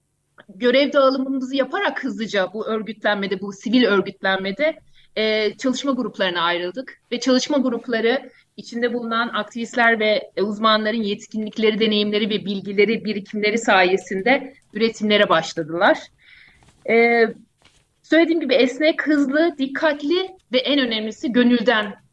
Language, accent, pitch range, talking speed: Turkish, native, 210-275 Hz, 100 wpm